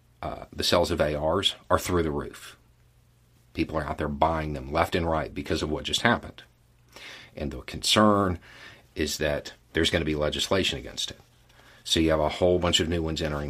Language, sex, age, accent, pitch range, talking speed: English, male, 40-59, American, 75-100 Hz, 200 wpm